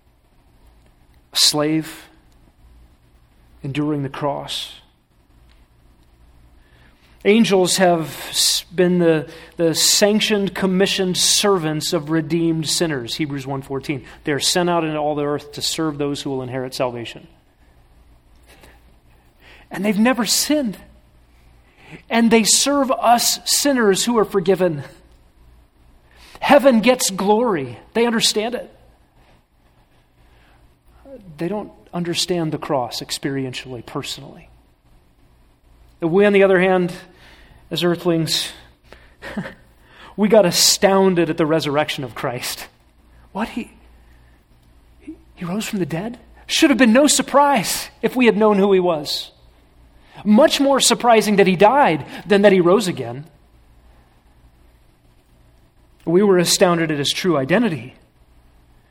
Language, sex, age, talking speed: English, male, 40-59, 115 wpm